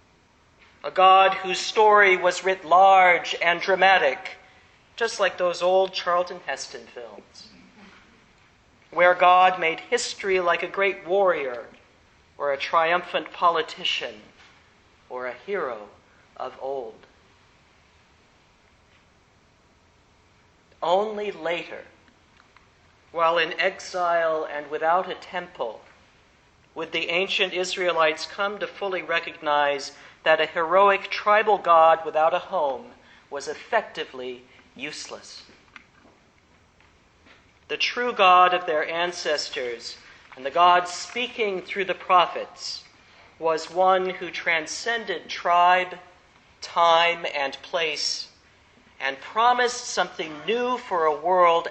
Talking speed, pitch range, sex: 105 wpm, 145-190 Hz, male